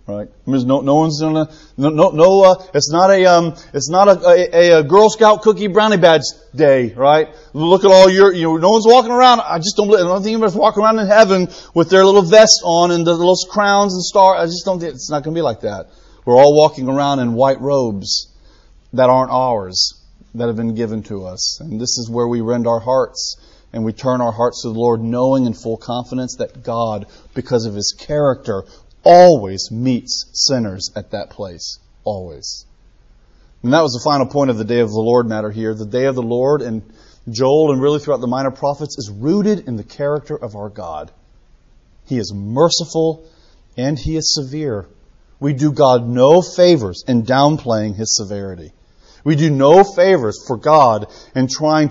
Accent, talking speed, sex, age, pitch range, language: American, 200 wpm, male, 30-49, 115-170 Hz, English